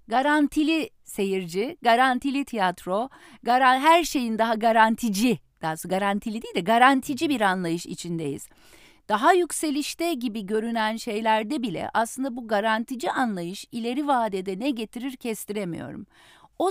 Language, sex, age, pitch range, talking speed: Turkish, female, 50-69, 180-285 Hz, 120 wpm